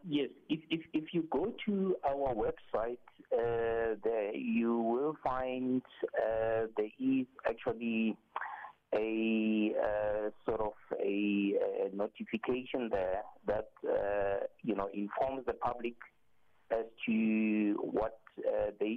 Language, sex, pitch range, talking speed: English, male, 105-130 Hz, 120 wpm